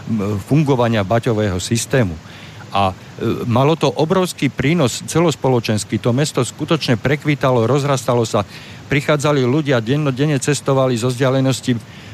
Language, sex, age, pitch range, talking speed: Slovak, male, 50-69, 110-140 Hz, 105 wpm